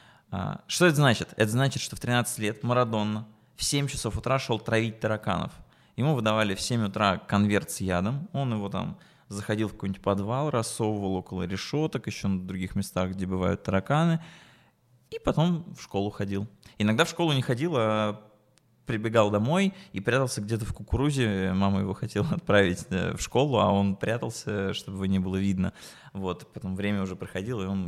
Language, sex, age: Russian, male, 20-39